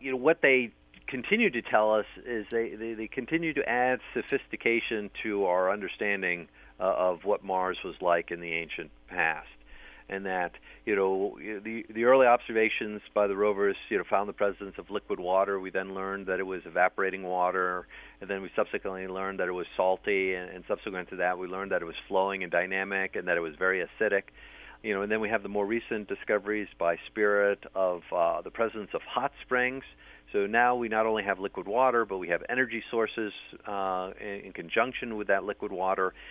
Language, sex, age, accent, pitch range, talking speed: English, male, 40-59, American, 95-115 Hz, 200 wpm